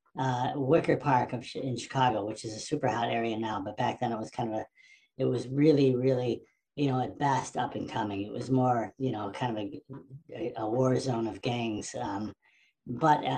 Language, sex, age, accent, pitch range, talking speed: English, female, 40-59, American, 125-145 Hz, 205 wpm